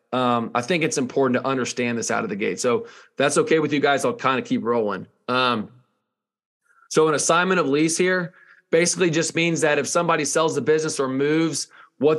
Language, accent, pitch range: English, American, 130-155 Hz